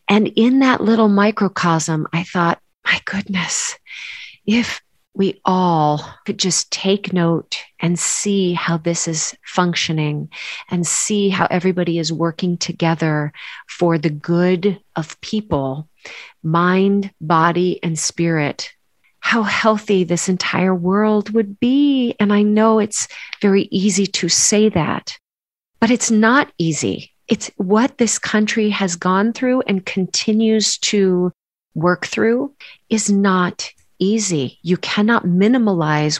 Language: English